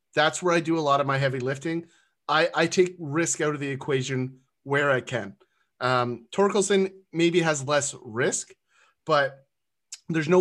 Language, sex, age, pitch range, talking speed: English, male, 30-49, 130-165 Hz, 175 wpm